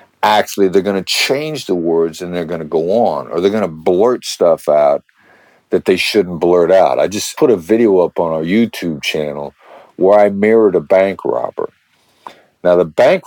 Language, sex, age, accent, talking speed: English, male, 50-69, American, 200 wpm